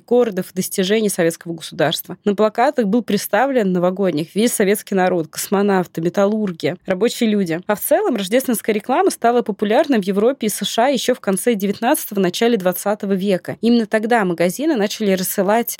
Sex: female